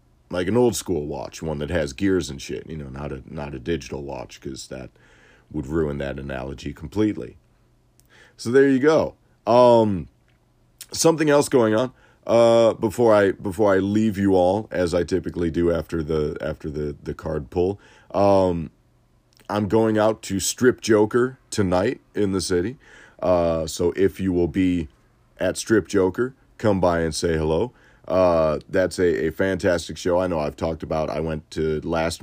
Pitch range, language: 80-95 Hz, English